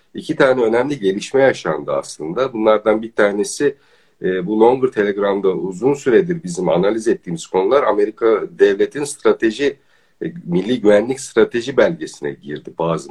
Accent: native